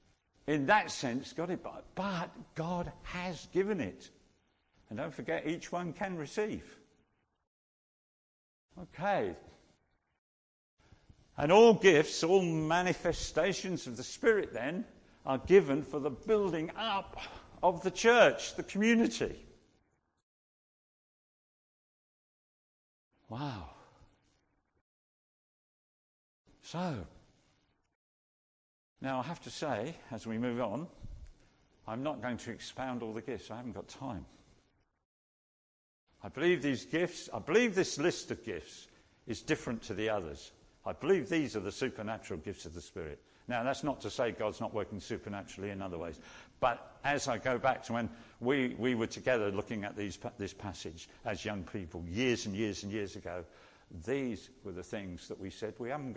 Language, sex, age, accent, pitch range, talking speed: English, male, 60-79, British, 105-170 Hz, 145 wpm